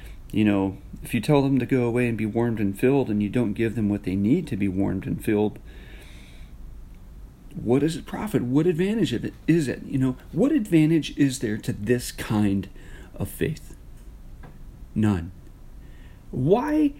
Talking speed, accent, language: 175 wpm, American, English